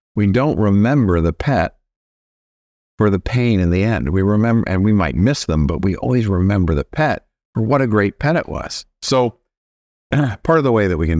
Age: 50-69